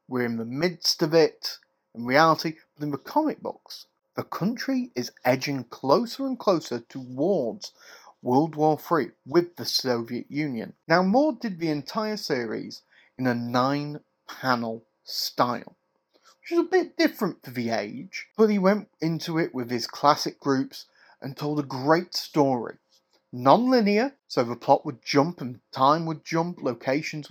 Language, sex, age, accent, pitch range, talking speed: English, male, 30-49, British, 140-195 Hz, 160 wpm